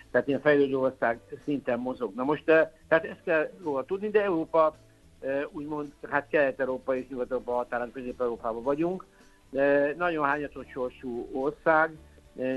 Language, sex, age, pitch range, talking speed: Hungarian, male, 60-79, 120-145 Hz, 140 wpm